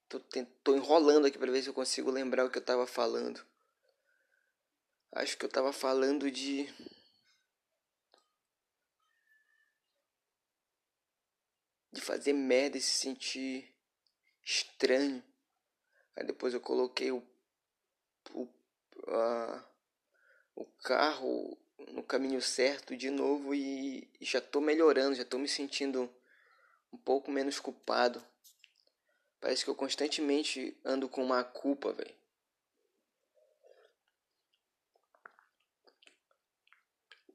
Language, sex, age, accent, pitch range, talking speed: Portuguese, male, 20-39, Brazilian, 130-165 Hz, 100 wpm